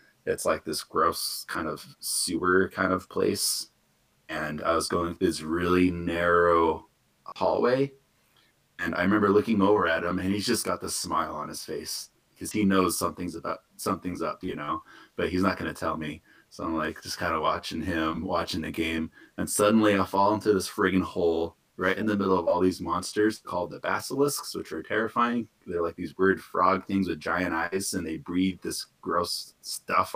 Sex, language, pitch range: male, English, 85-100 Hz